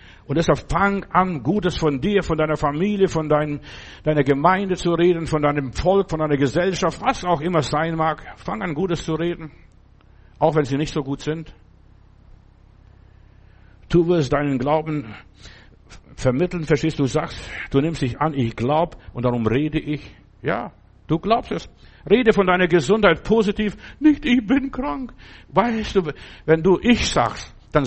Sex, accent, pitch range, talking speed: male, German, 140-190 Hz, 165 wpm